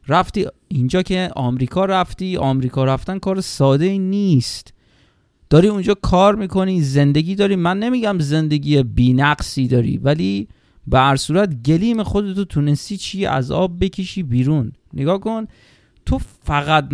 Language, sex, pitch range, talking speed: Persian, male, 140-205 Hz, 130 wpm